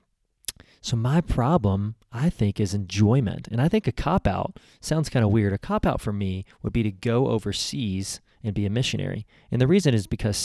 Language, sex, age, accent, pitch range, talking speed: English, male, 30-49, American, 100-125 Hz, 195 wpm